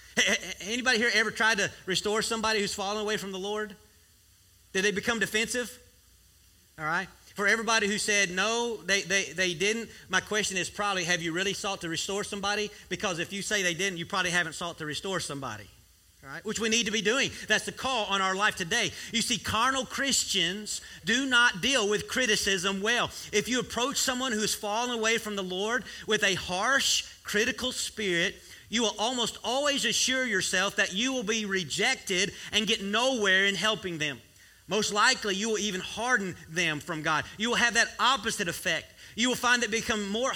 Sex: male